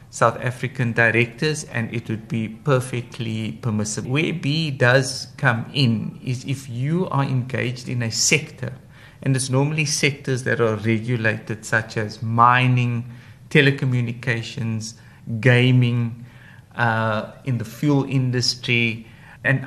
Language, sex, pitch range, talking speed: English, male, 115-135 Hz, 120 wpm